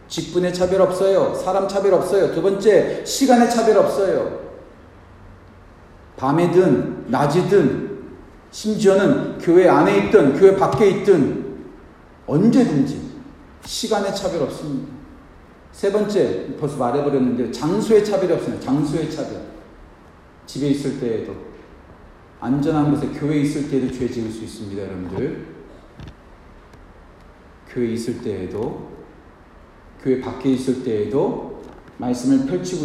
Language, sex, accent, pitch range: Korean, male, native, 120-185 Hz